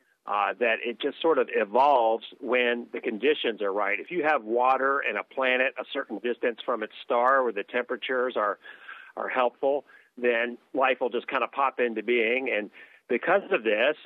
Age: 40-59